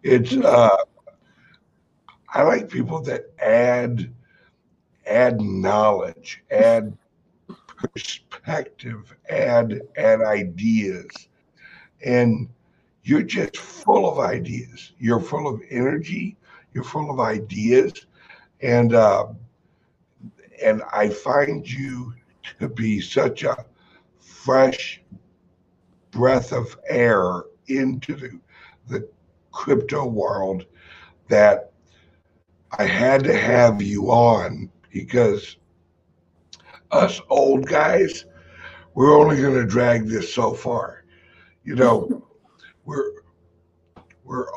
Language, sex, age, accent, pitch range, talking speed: English, male, 60-79, American, 90-135 Hz, 95 wpm